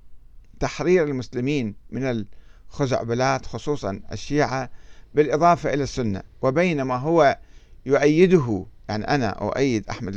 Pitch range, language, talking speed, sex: 105-145 Hz, Arabic, 100 wpm, male